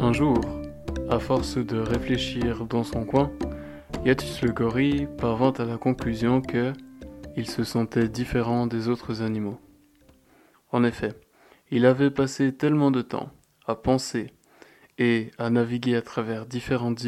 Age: 20-39